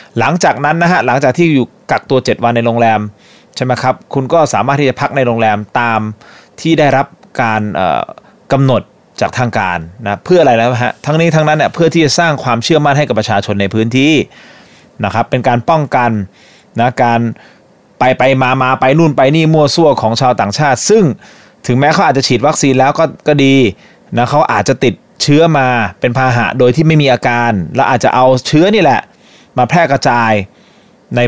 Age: 20-39